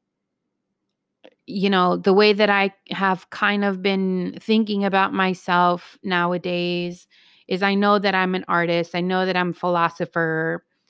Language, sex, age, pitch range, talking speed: English, female, 30-49, 170-200 Hz, 150 wpm